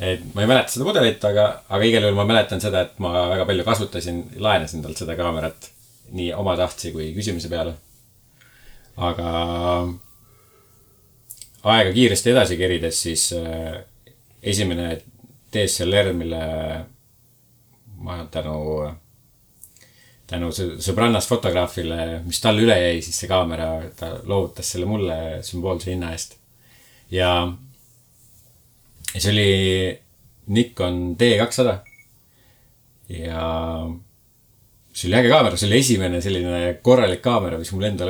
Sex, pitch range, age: male, 85-115 Hz, 30-49